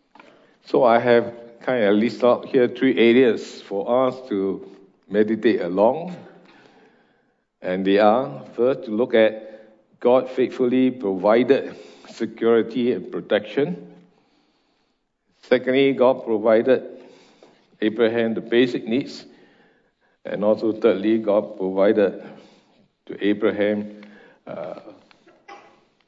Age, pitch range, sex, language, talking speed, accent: 60-79, 105-125 Hz, male, English, 100 wpm, Malaysian